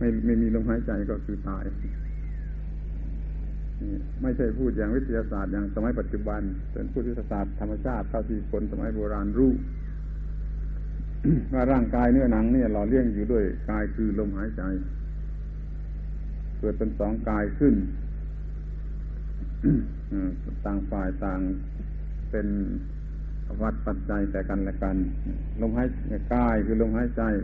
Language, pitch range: Thai, 75-115 Hz